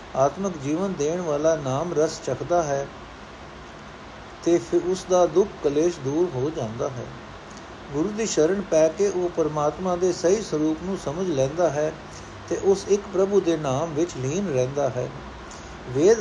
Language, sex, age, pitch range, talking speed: Punjabi, male, 60-79, 140-185 Hz, 150 wpm